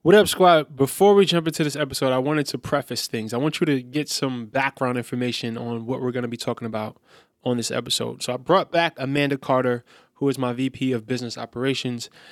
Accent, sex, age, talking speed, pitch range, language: American, male, 20-39, 225 wpm, 125-150 Hz, English